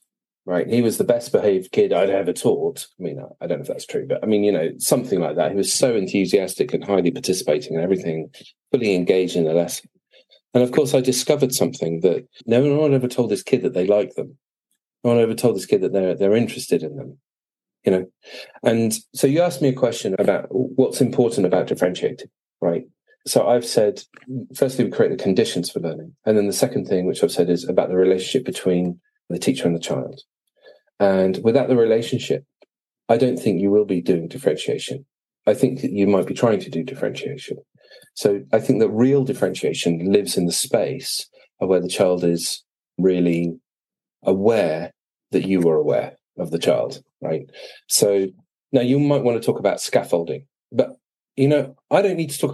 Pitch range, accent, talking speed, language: 95-140 Hz, British, 200 wpm, English